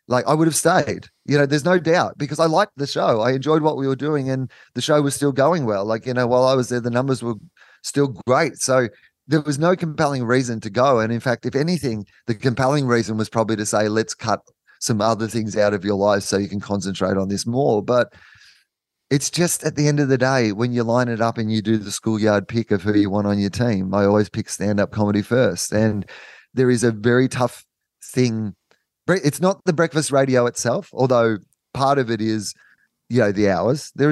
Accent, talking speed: Australian, 230 wpm